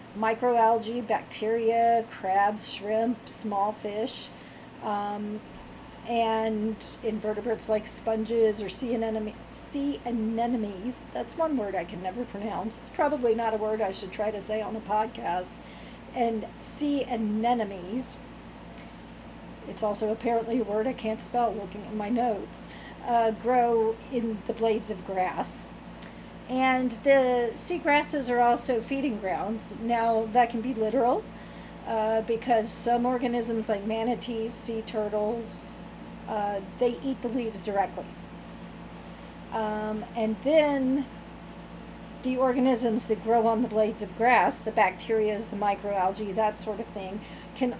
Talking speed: 130 wpm